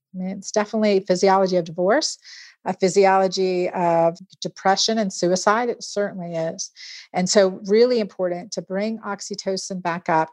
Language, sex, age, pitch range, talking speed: English, female, 50-69, 180-215 Hz, 150 wpm